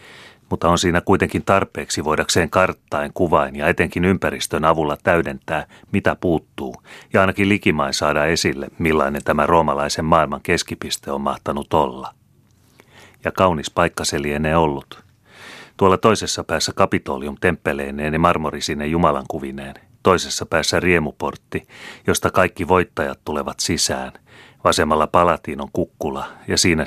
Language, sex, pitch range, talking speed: Finnish, male, 75-90 Hz, 125 wpm